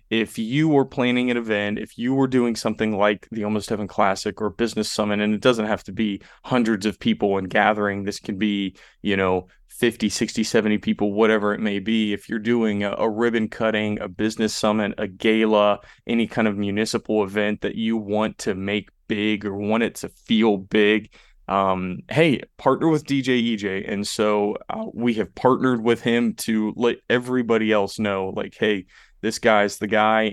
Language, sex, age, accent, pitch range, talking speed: English, male, 20-39, American, 100-110 Hz, 190 wpm